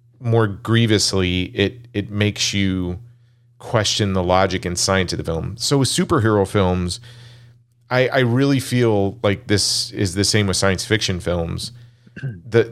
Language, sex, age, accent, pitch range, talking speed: English, male, 40-59, American, 100-120 Hz, 150 wpm